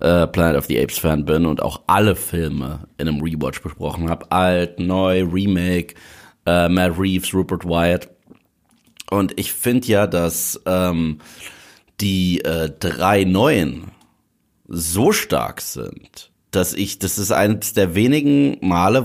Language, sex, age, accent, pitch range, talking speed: German, male, 30-49, German, 85-100 Hz, 130 wpm